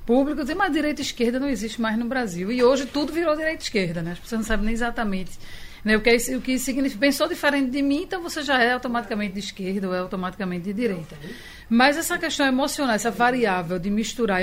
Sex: female